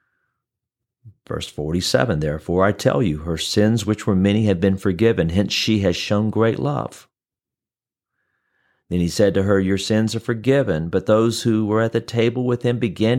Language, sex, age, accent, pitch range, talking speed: English, male, 40-59, American, 105-145 Hz, 175 wpm